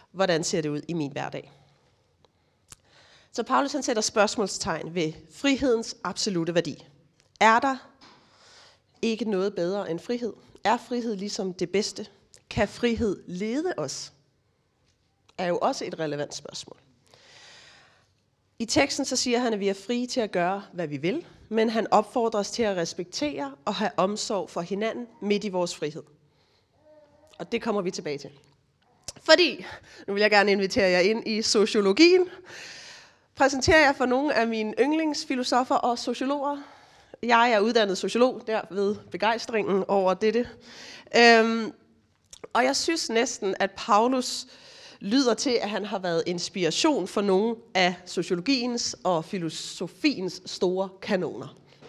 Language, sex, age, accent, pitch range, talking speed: Danish, female, 30-49, native, 185-245 Hz, 145 wpm